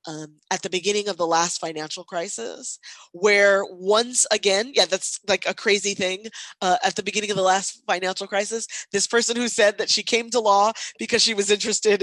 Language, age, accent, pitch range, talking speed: English, 20-39, American, 180-230 Hz, 195 wpm